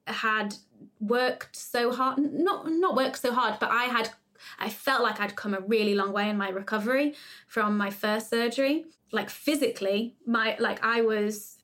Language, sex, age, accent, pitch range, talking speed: English, female, 20-39, British, 205-240 Hz, 175 wpm